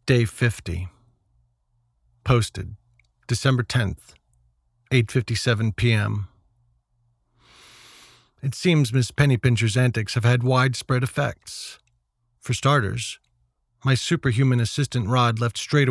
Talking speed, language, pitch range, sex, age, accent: 100 wpm, English, 110-135 Hz, male, 40-59, American